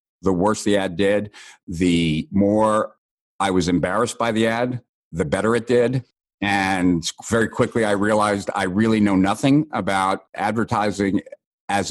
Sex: male